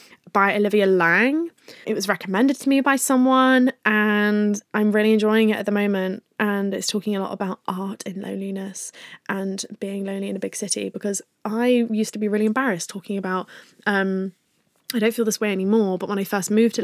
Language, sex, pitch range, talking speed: English, female, 190-220 Hz, 200 wpm